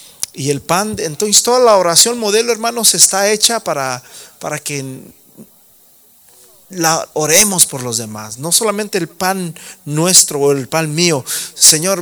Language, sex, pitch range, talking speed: Spanish, male, 130-170 Hz, 145 wpm